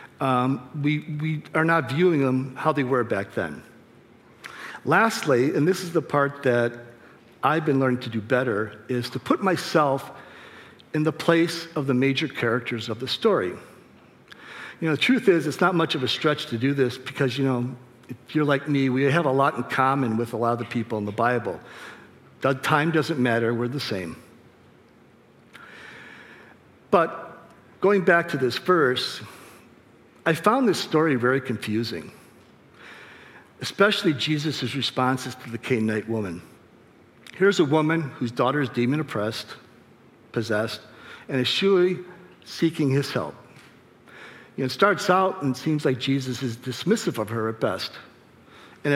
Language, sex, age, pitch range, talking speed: English, male, 50-69, 125-160 Hz, 160 wpm